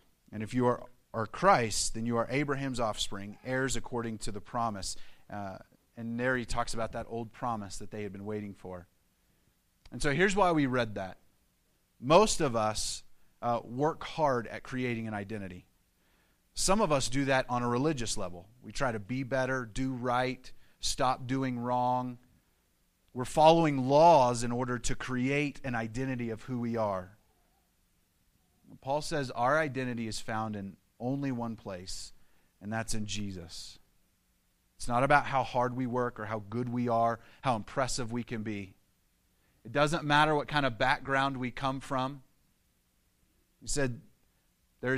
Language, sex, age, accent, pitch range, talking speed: English, male, 30-49, American, 105-135 Hz, 165 wpm